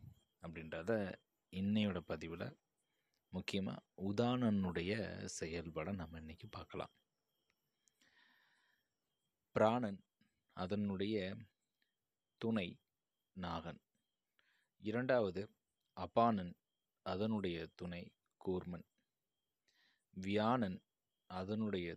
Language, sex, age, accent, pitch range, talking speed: Tamil, male, 30-49, native, 90-110 Hz, 55 wpm